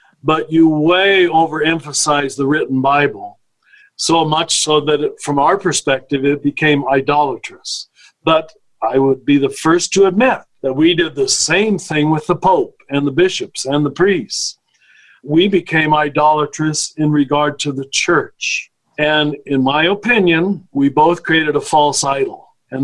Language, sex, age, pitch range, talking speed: English, male, 50-69, 140-175 Hz, 155 wpm